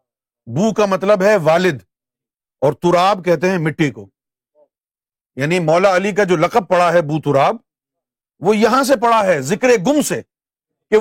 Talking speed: 165 wpm